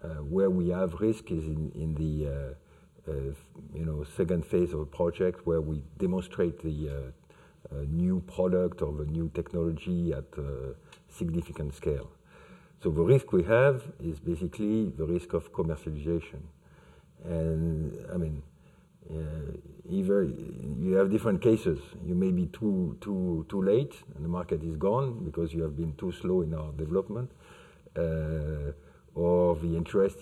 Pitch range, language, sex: 75-90 Hz, English, male